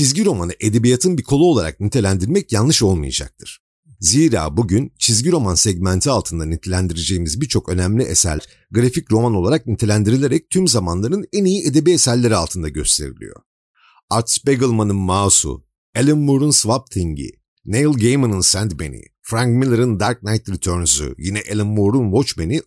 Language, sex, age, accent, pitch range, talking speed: Turkish, male, 50-69, native, 90-130 Hz, 130 wpm